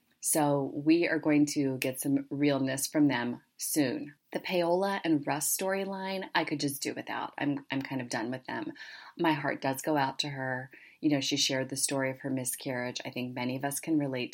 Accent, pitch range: American, 135-165 Hz